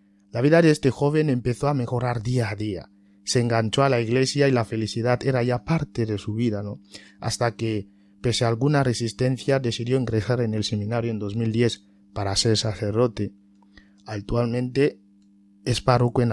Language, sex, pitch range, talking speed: Spanish, male, 105-125 Hz, 170 wpm